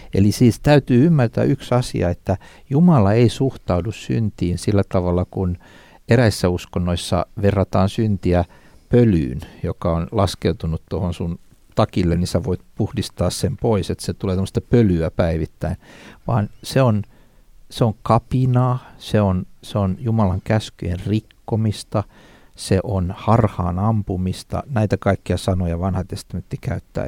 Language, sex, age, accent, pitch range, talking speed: Finnish, male, 60-79, native, 90-120 Hz, 130 wpm